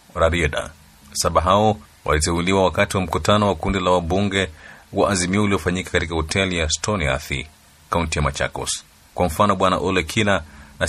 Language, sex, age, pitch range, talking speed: Swahili, male, 30-49, 80-95 Hz, 145 wpm